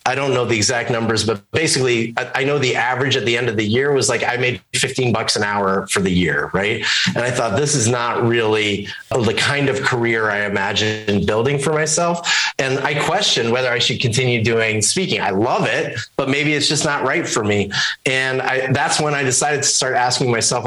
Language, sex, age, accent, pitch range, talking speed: English, male, 30-49, American, 115-145 Hz, 225 wpm